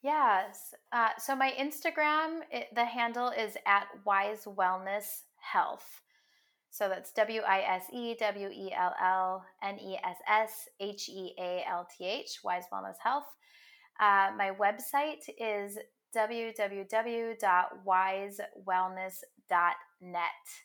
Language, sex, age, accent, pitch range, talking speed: English, female, 20-39, American, 185-230 Hz, 115 wpm